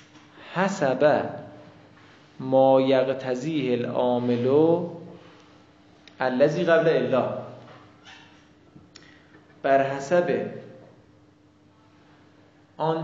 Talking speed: 45 wpm